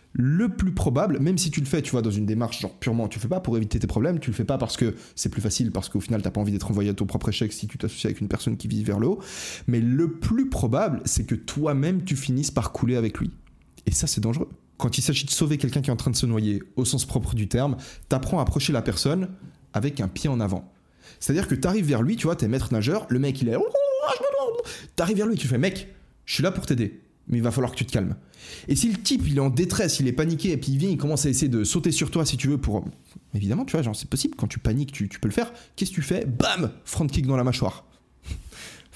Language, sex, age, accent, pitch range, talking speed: French, male, 20-39, French, 110-145 Hz, 295 wpm